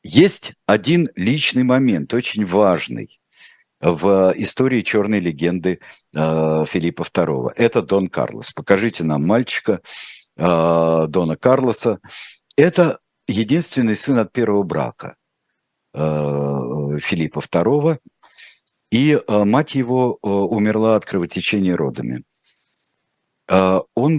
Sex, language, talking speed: male, Russian, 90 wpm